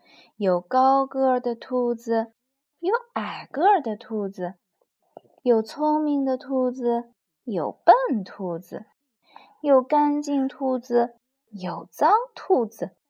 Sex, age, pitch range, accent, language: female, 20-39, 210-315 Hz, native, Chinese